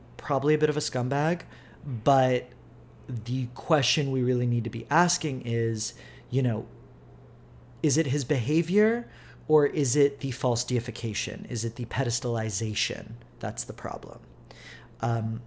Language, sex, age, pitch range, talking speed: English, male, 30-49, 115-145 Hz, 140 wpm